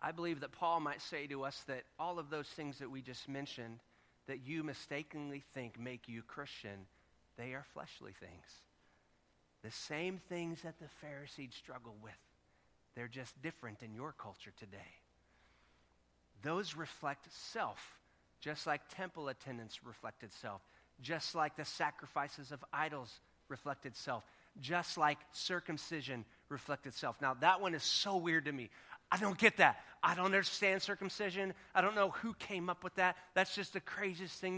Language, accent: English, American